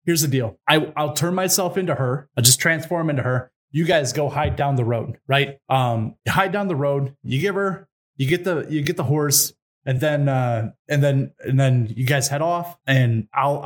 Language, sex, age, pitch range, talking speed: English, male, 20-39, 130-155 Hz, 220 wpm